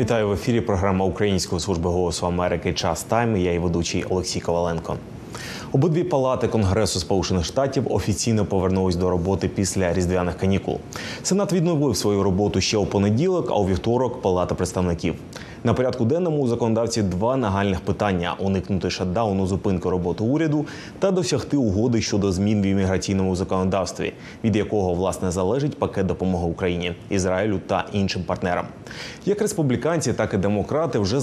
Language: Ukrainian